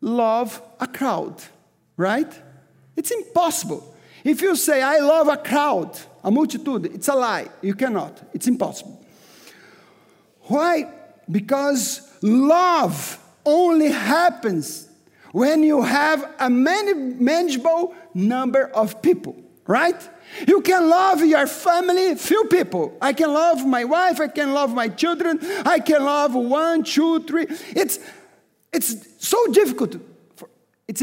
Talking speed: 125 wpm